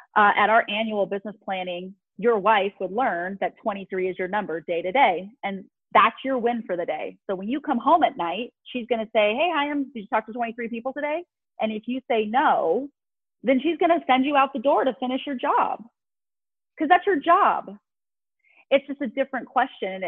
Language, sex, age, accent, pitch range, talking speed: English, female, 30-49, American, 195-250 Hz, 220 wpm